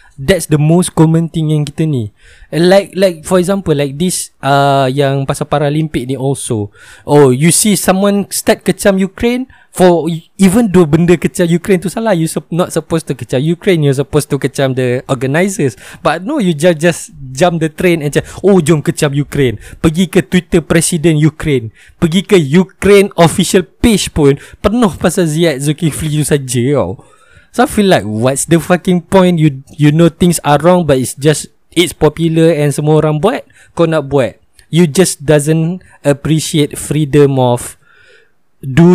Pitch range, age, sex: 135-180 Hz, 20-39, male